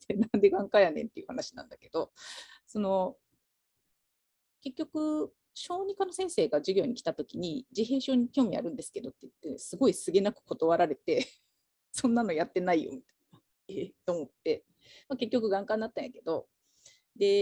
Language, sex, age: Japanese, female, 30-49